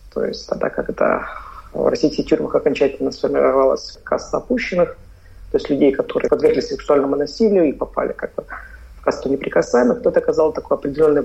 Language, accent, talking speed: Russian, native, 155 wpm